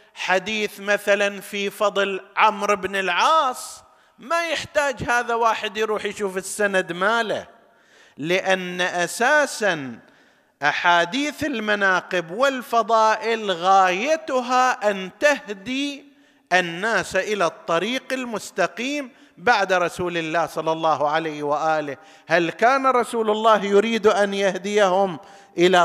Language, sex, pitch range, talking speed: Arabic, male, 170-230 Hz, 95 wpm